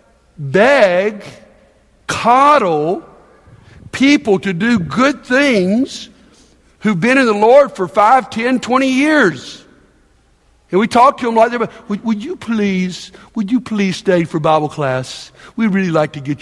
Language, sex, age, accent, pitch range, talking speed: English, male, 60-79, American, 160-245 Hz, 145 wpm